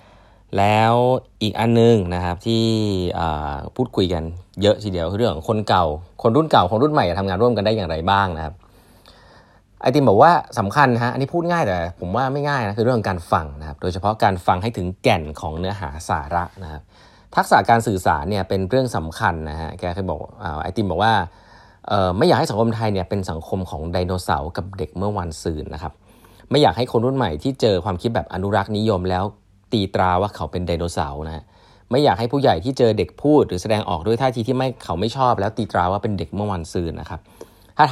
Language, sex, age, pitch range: Thai, male, 20-39, 90-115 Hz